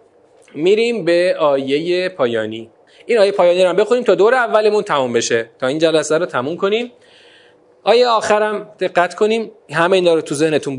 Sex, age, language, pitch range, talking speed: male, 40-59, Persian, 170-275 Hz, 160 wpm